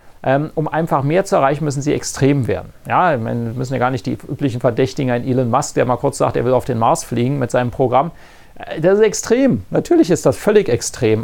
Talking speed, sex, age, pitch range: 225 wpm, male, 40-59, 125-155 Hz